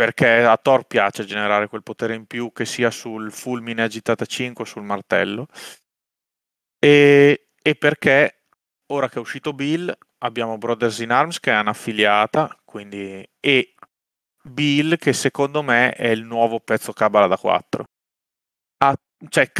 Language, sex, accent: Italian, male, native